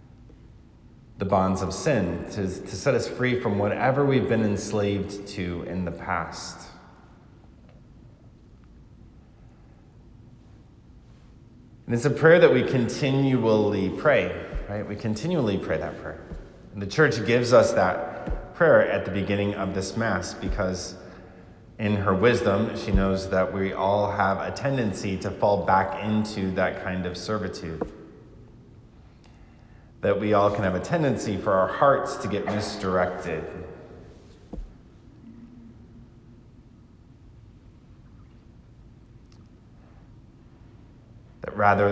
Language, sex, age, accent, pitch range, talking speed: English, male, 30-49, American, 95-115 Hz, 115 wpm